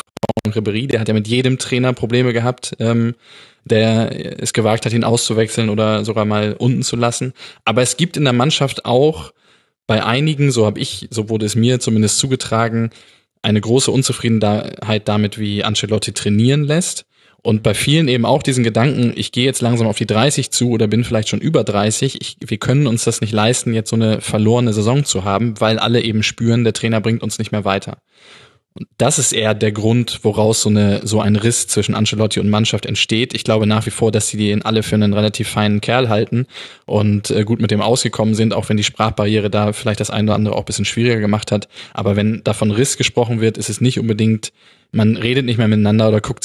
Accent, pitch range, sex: German, 105-120 Hz, male